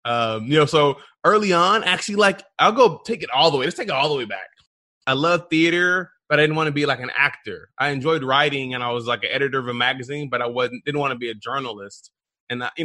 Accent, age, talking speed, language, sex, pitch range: American, 20-39, 265 wpm, English, male, 120-160 Hz